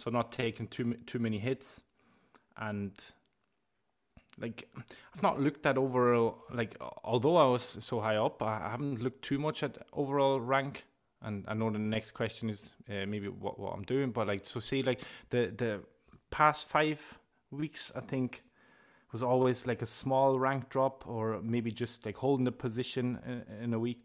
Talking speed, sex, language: 180 wpm, male, English